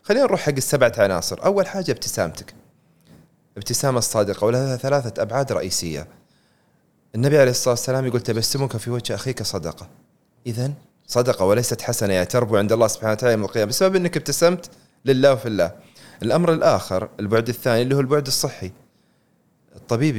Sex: male